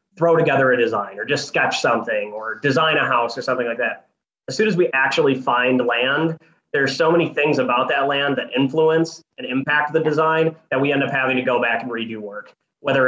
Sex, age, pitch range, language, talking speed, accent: male, 20-39, 130-160 Hz, English, 220 wpm, American